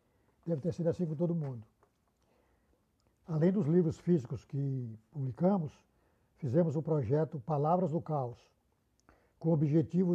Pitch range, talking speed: 140-175 Hz, 130 wpm